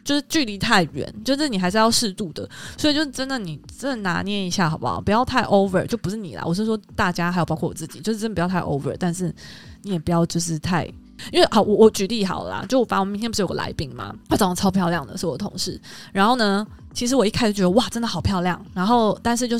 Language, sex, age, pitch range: Chinese, female, 20-39, 170-210 Hz